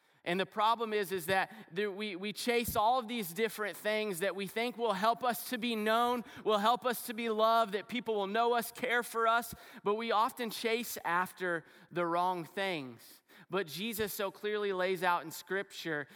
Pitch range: 170-215 Hz